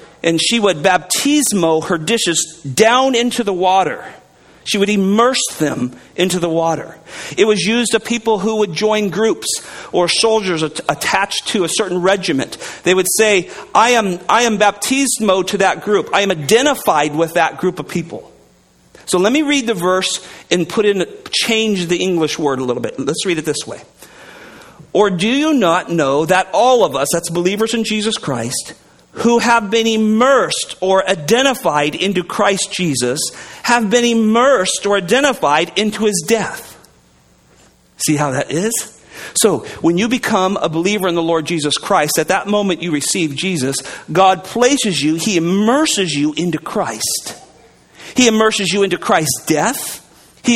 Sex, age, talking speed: male, 40-59, 165 wpm